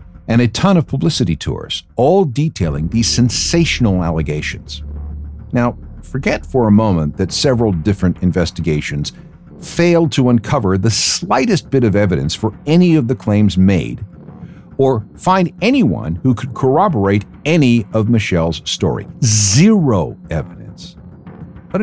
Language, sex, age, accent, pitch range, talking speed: English, male, 60-79, American, 90-140 Hz, 130 wpm